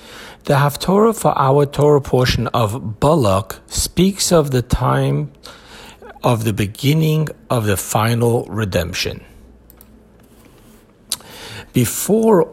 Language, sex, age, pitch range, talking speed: English, male, 60-79, 105-130 Hz, 95 wpm